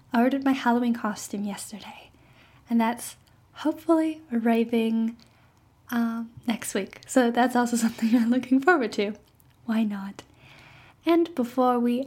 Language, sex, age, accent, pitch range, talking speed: English, female, 10-29, American, 220-240 Hz, 130 wpm